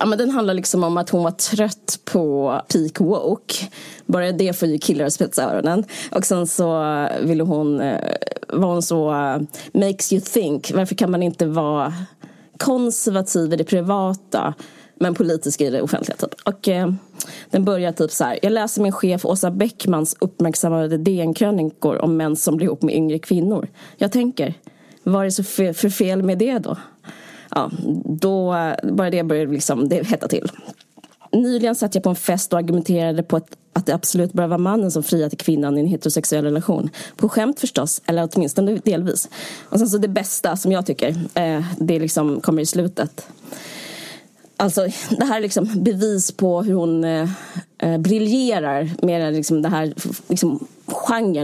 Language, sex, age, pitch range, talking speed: Swedish, female, 20-39, 160-200 Hz, 170 wpm